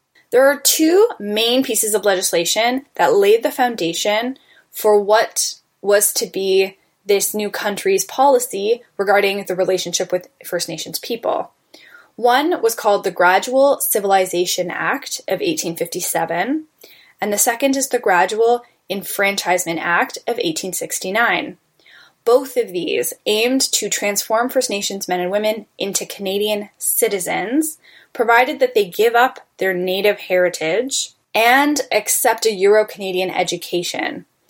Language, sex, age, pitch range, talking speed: English, female, 10-29, 185-255 Hz, 125 wpm